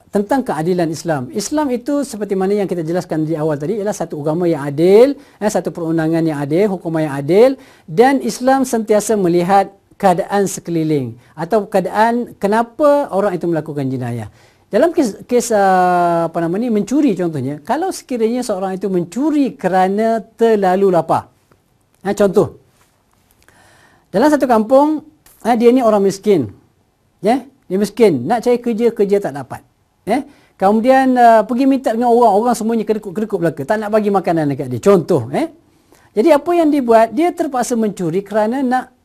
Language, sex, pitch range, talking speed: Malay, male, 165-240 Hz, 150 wpm